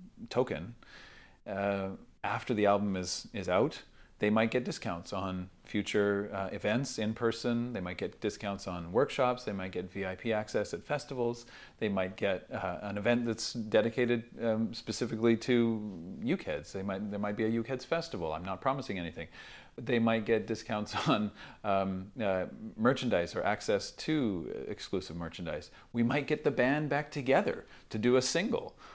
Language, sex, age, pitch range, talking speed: English, male, 40-59, 95-125 Hz, 165 wpm